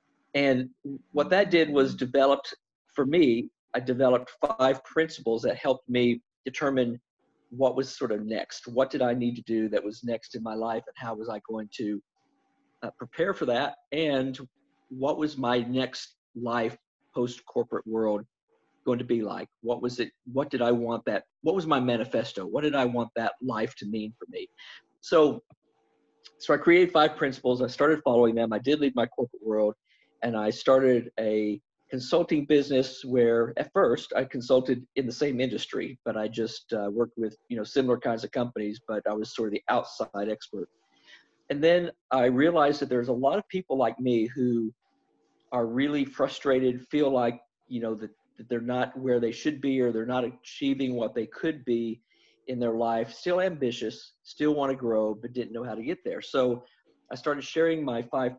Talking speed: 190 wpm